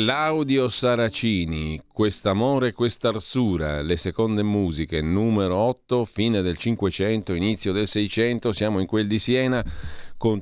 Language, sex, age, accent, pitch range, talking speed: Italian, male, 40-59, native, 85-110 Hz, 120 wpm